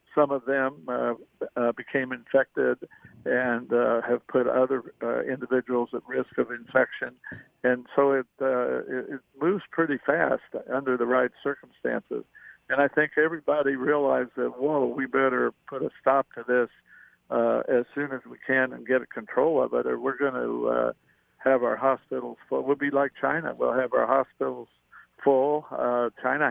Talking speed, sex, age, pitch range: 170 wpm, male, 60-79, 120-135 Hz